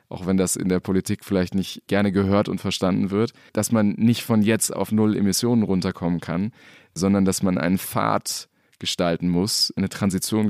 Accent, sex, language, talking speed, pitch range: German, male, German, 185 wpm, 95-105 Hz